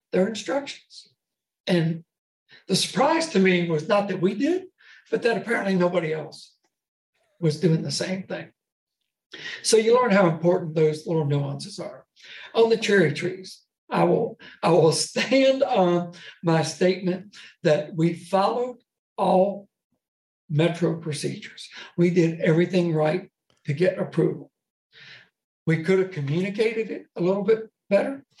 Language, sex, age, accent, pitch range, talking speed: English, male, 60-79, American, 165-200 Hz, 135 wpm